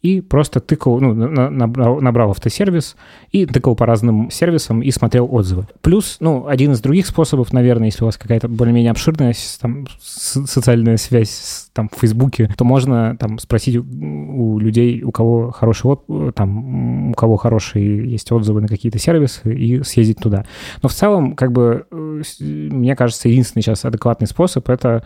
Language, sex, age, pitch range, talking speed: Russian, male, 20-39, 110-130 Hz, 165 wpm